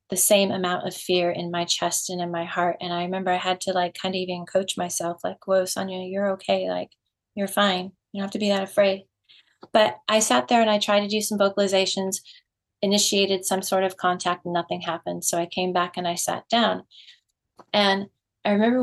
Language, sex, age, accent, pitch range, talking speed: English, female, 30-49, American, 175-205 Hz, 220 wpm